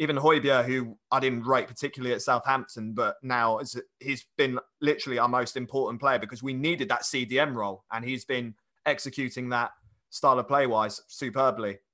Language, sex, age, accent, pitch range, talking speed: English, male, 30-49, British, 120-145 Hz, 165 wpm